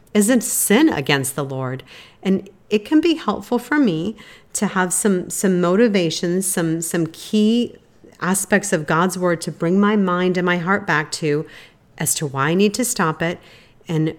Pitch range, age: 150-195 Hz, 40-59